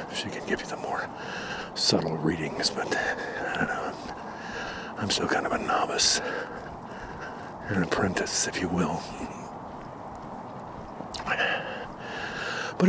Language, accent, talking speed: English, American, 110 wpm